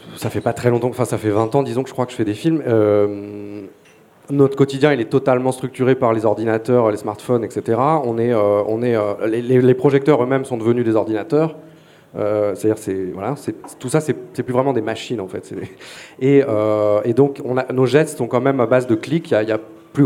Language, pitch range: English, 110-135 Hz